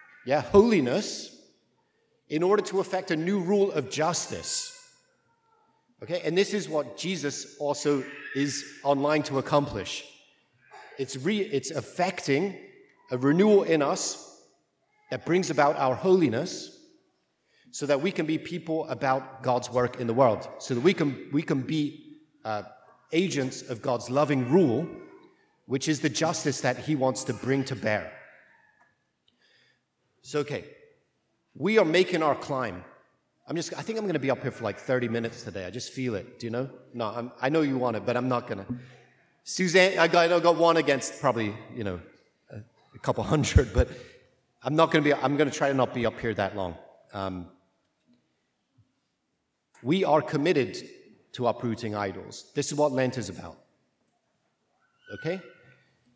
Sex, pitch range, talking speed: male, 125-180 Hz, 160 wpm